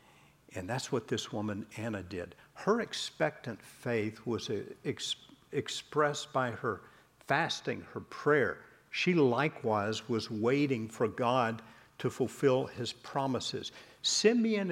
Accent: American